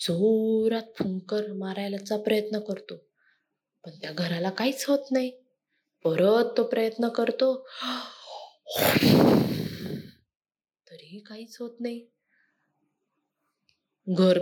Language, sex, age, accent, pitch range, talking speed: Marathi, female, 20-39, native, 190-235 Hz, 50 wpm